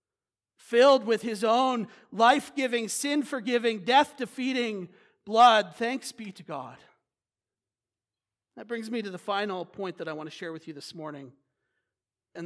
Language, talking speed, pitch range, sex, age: English, 140 wpm, 180-245 Hz, male, 40-59